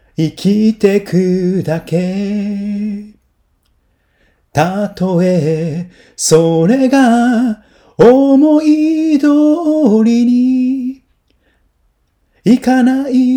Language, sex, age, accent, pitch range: Japanese, male, 40-59, native, 180-240 Hz